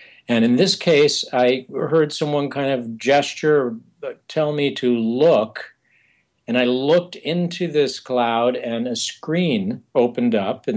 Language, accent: English, American